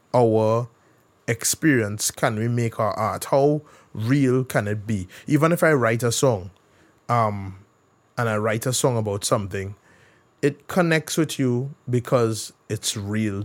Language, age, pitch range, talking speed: English, 20-39, 110-140 Hz, 145 wpm